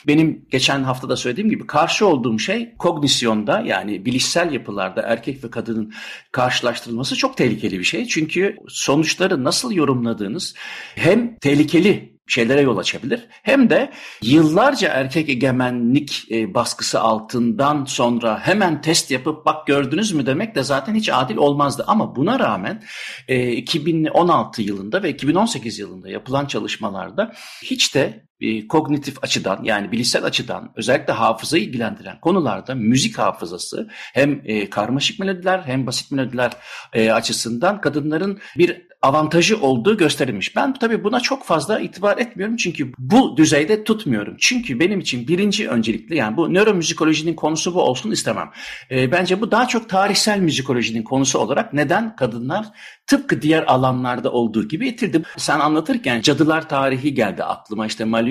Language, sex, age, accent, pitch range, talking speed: Turkish, male, 60-79, native, 125-185 Hz, 135 wpm